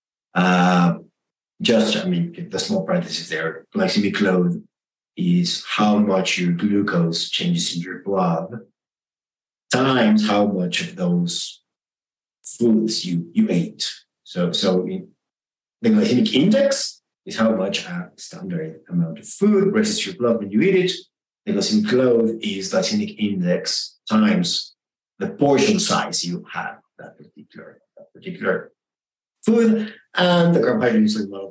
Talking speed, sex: 140 wpm, male